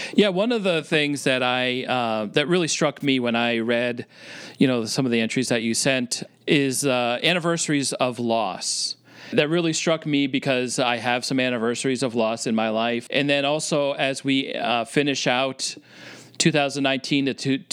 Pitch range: 120-145 Hz